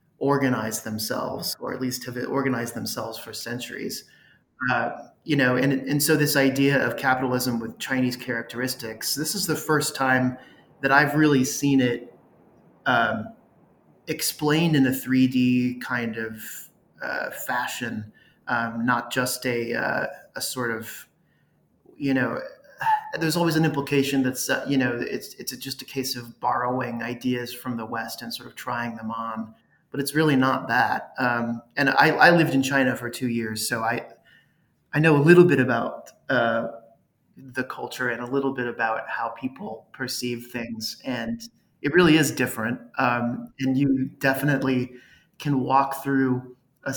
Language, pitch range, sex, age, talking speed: English, 120-140 Hz, male, 30-49, 160 wpm